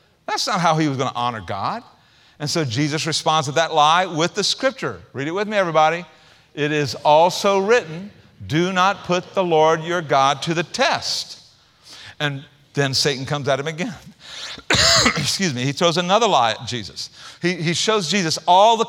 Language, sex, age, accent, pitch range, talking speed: English, male, 50-69, American, 145-200 Hz, 185 wpm